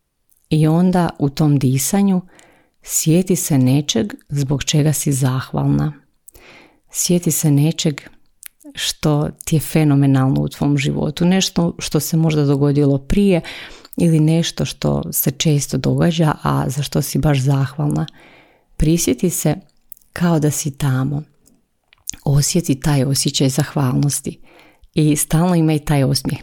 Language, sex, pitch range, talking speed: Croatian, female, 140-165 Hz, 125 wpm